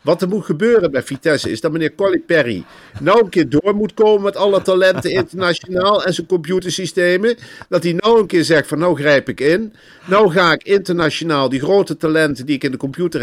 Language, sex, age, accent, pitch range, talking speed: Dutch, male, 50-69, Dutch, 155-185 Hz, 215 wpm